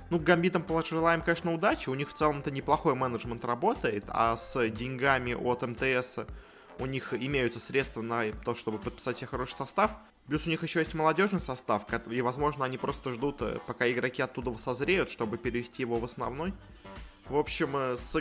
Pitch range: 115-145 Hz